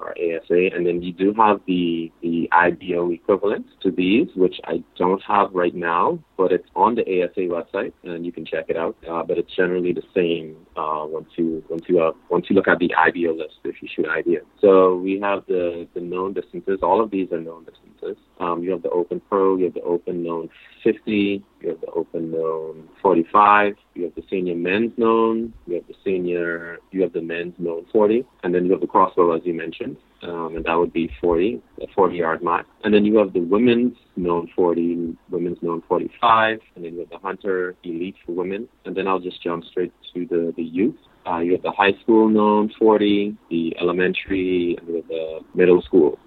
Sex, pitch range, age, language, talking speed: male, 85-95 Hz, 30-49, English, 210 wpm